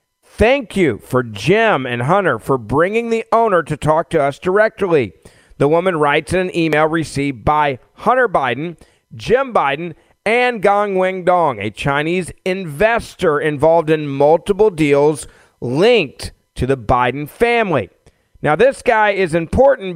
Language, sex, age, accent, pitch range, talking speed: English, male, 40-59, American, 140-195 Hz, 145 wpm